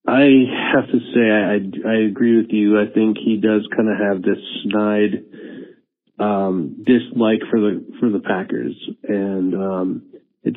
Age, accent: 40-59, American